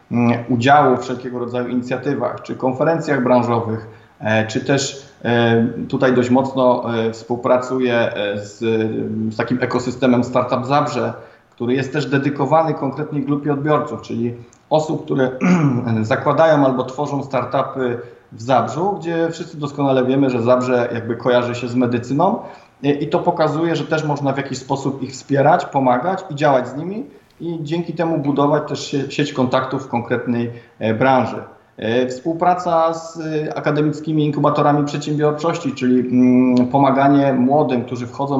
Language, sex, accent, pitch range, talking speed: Polish, male, native, 125-150 Hz, 130 wpm